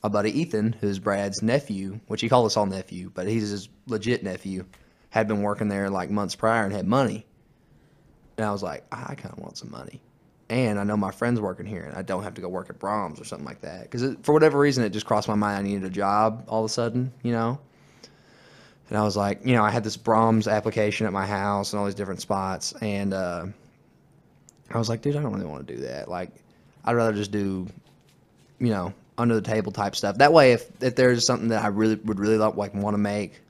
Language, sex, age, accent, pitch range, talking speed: English, male, 20-39, American, 100-115 Hz, 240 wpm